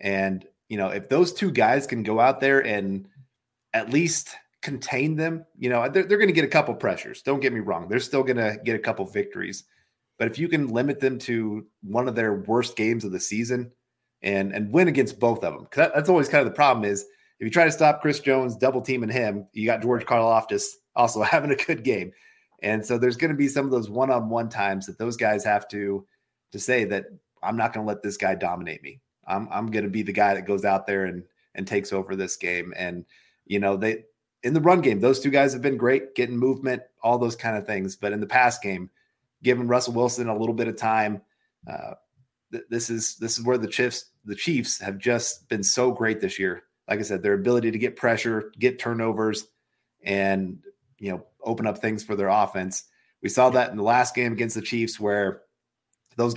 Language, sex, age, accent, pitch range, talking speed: English, male, 30-49, American, 105-130 Hz, 230 wpm